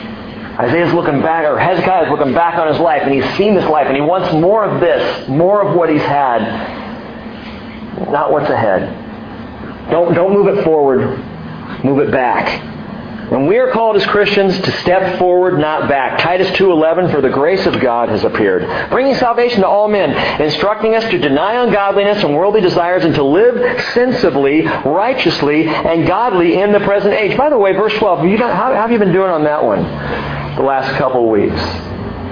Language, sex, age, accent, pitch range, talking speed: English, male, 50-69, American, 135-190 Hz, 195 wpm